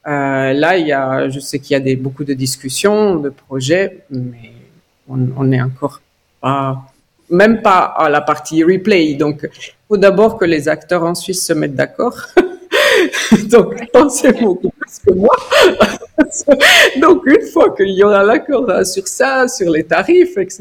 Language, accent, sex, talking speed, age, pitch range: French, French, female, 170 wpm, 50-69, 150-225 Hz